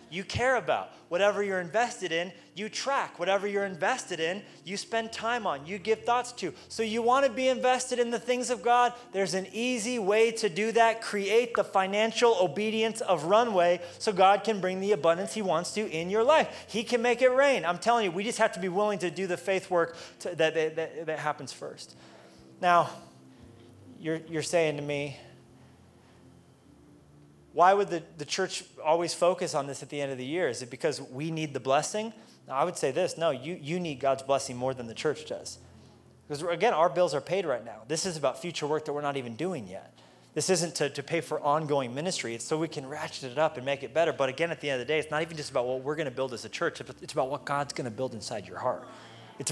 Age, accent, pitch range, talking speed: 30-49, American, 145-210 Hz, 235 wpm